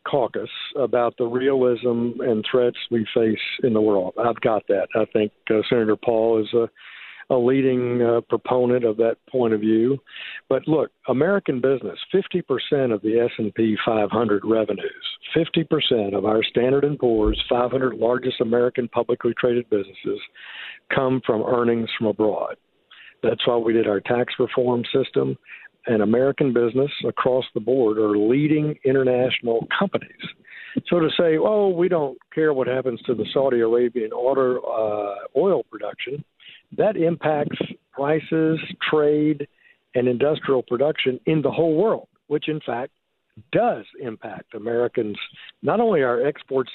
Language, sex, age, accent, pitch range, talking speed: English, male, 50-69, American, 115-155 Hz, 145 wpm